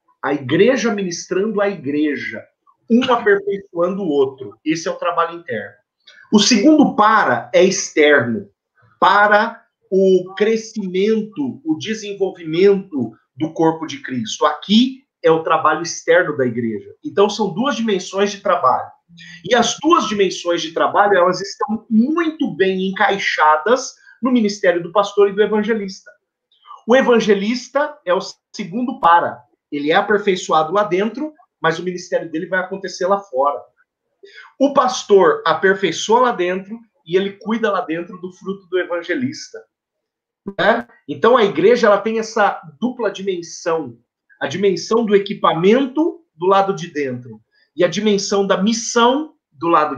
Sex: male